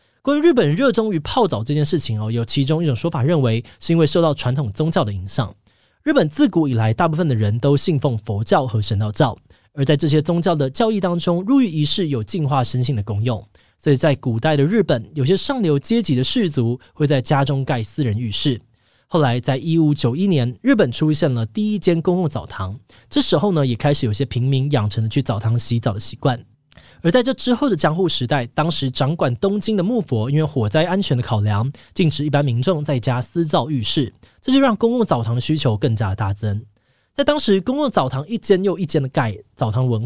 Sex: male